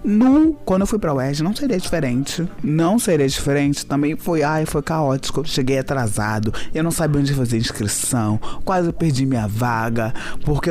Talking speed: 190 wpm